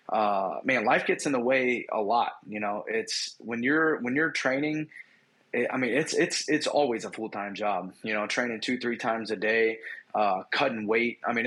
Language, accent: English, American